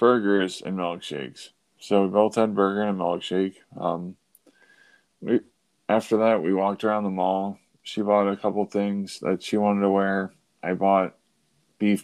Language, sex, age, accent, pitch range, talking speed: English, male, 20-39, American, 90-105 Hz, 165 wpm